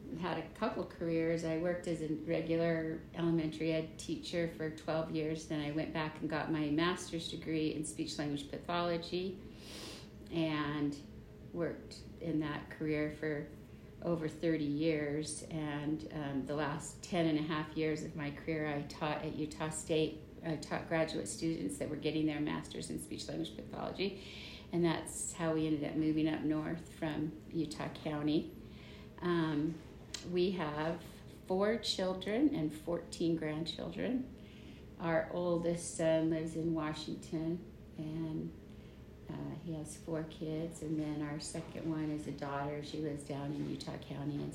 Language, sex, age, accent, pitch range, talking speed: English, female, 50-69, American, 150-165 Hz, 155 wpm